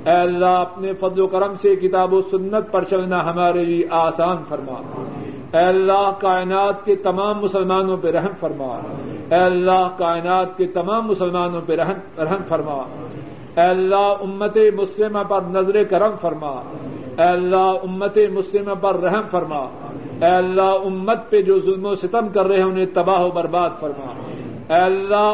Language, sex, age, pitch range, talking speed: Urdu, male, 50-69, 175-195 Hz, 155 wpm